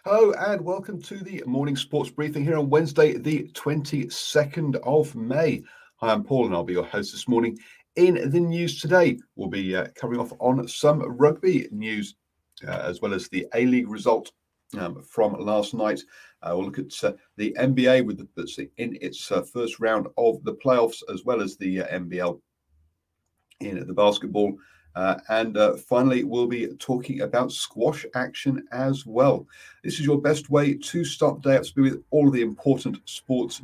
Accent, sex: British, male